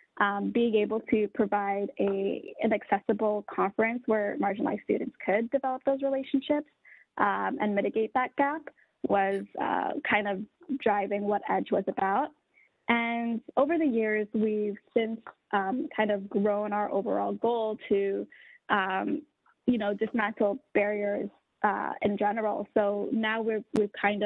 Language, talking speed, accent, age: English, 135 wpm, American, 10-29